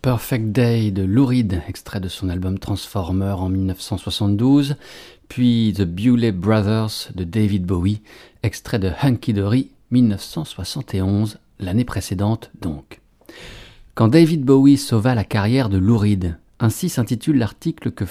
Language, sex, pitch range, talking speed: French, male, 95-125 Hz, 135 wpm